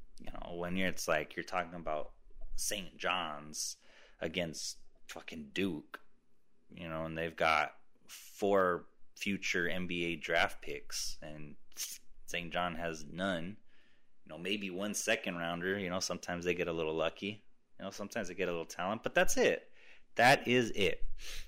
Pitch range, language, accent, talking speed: 85-120 Hz, English, American, 160 wpm